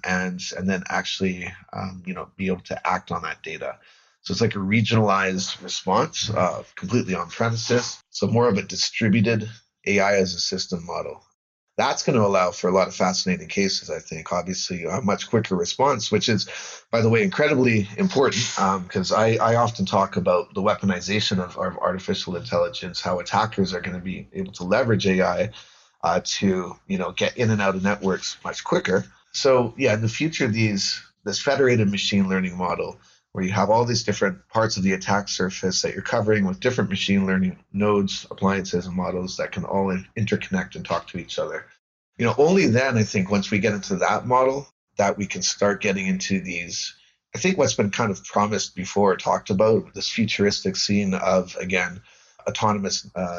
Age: 30-49